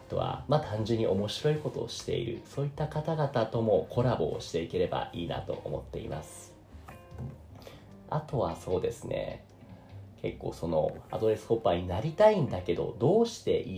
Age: 40-59